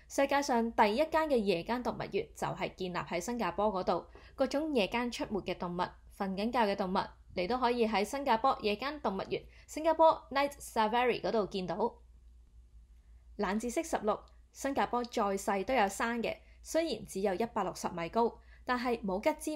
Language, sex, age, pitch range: Chinese, female, 20-39, 185-245 Hz